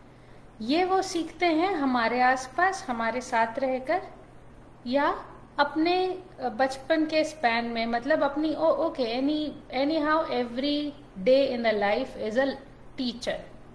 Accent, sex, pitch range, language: native, female, 235-290 Hz, Hindi